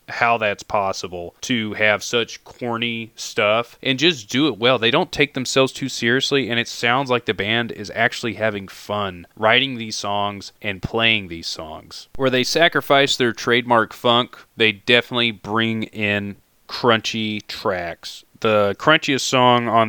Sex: male